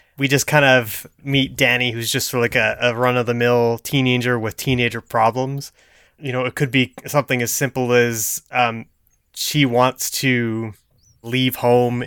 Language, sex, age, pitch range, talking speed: English, male, 20-39, 115-135 Hz, 155 wpm